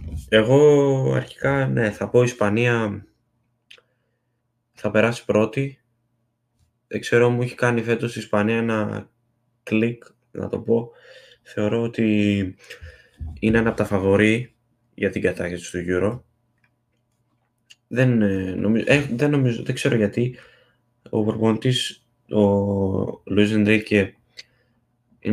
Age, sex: 20-39, male